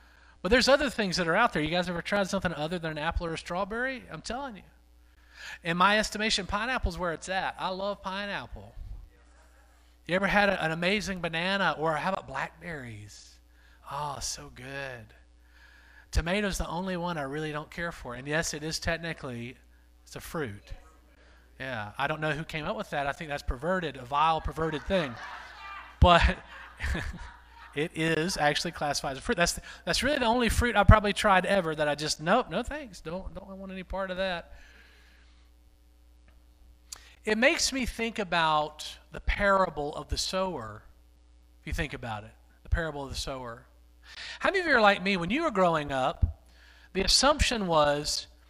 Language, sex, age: English, male, 40-59